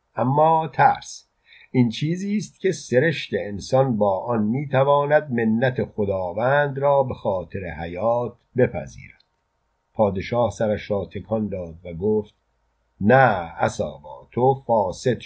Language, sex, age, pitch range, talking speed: Persian, male, 50-69, 100-135 Hz, 115 wpm